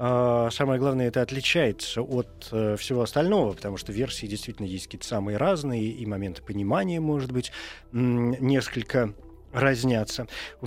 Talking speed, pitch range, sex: 125 wpm, 110-155 Hz, male